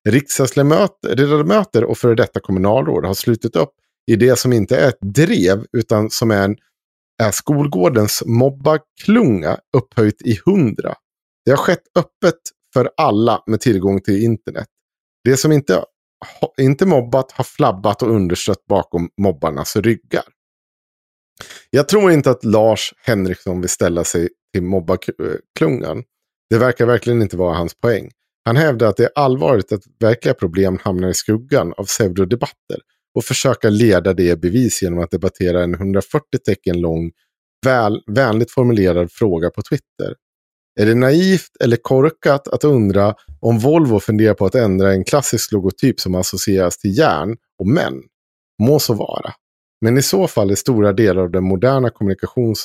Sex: male